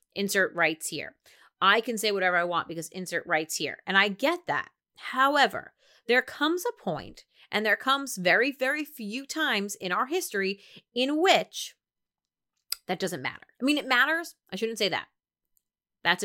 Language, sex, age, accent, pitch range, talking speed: English, female, 30-49, American, 190-290 Hz, 170 wpm